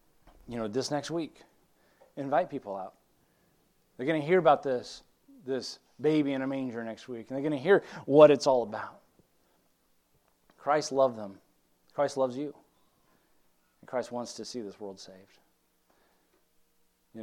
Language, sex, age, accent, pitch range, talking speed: English, male, 30-49, American, 100-130 Hz, 155 wpm